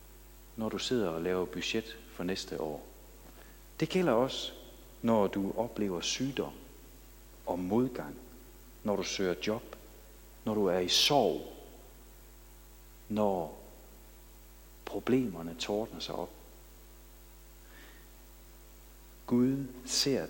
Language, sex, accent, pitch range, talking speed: Danish, male, native, 85-125 Hz, 100 wpm